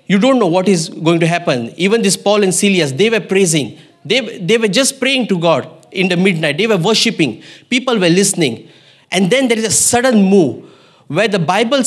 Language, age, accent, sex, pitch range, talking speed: English, 20-39, Indian, male, 185-235 Hz, 210 wpm